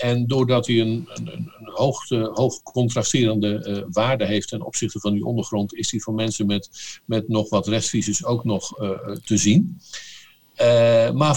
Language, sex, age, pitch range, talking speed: Dutch, male, 50-69, 110-145 Hz, 175 wpm